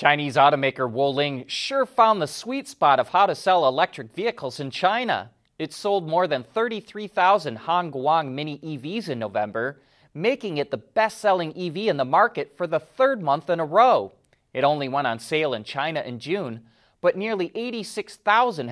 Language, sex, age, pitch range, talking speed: English, male, 30-49, 125-190 Hz, 170 wpm